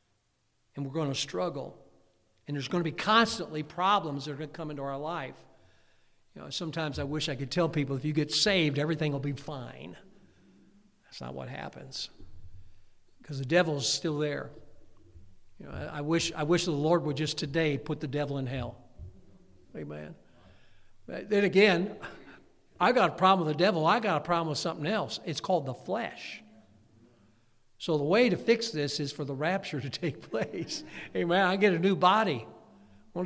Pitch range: 115-180 Hz